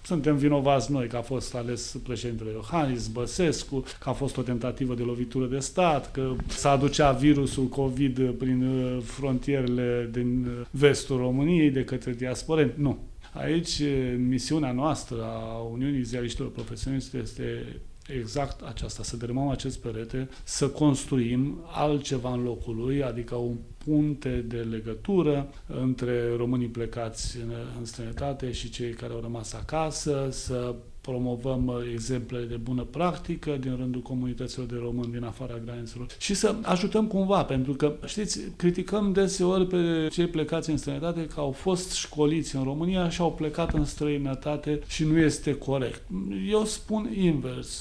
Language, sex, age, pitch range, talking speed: English, male, 30-49, 120-150 Hz, 145 wpm